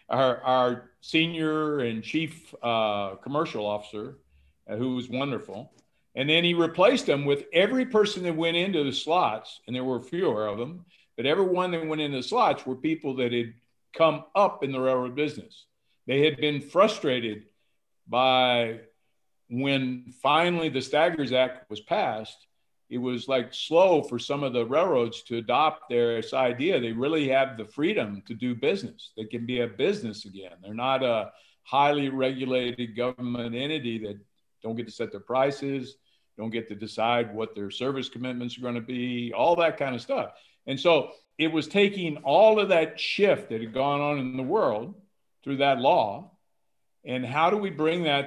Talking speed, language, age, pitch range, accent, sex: 180 wpm, English, 50-69, 120-155 Hz, American, male